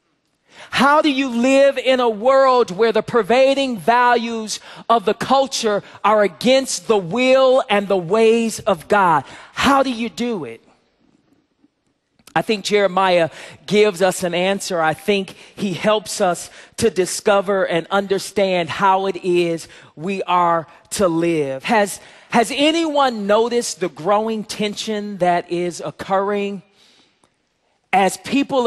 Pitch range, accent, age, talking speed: 190-240 Hz, American, 40-59, 130 wpm